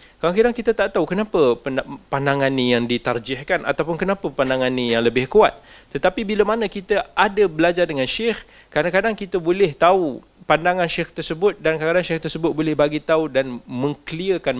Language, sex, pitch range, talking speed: Malay, male, 140-190 Hz, 165 wpm